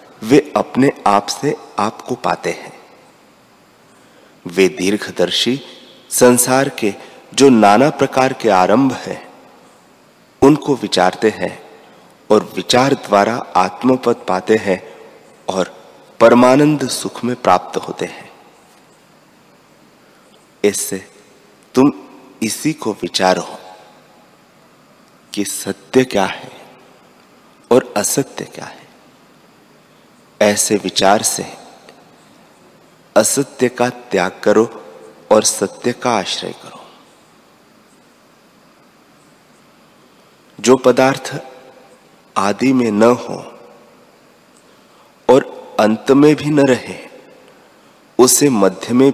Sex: male